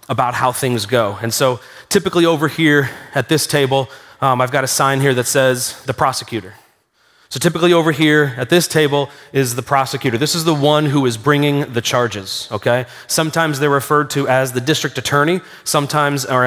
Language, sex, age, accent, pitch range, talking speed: English, male, 30-49, American, 125-150 Hz, 185 wpm